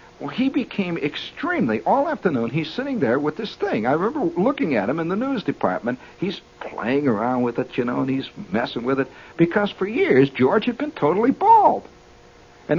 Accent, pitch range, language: American, 130-195 Hz, English